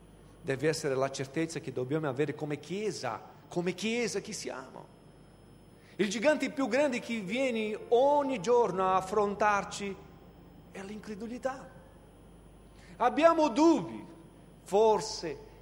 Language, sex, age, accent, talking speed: Italian, male, 40-59, native, 110 wpm